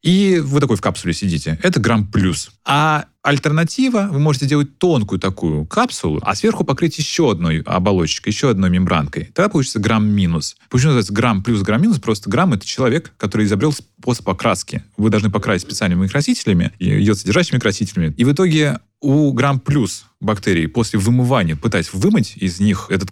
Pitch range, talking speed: 95-135 Hz, 170 wpm